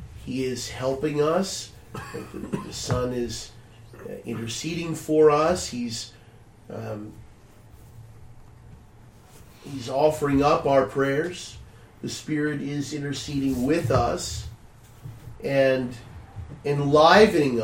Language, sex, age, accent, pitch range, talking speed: English, male, 40-59, American, 110-160 Hz, 85 wpm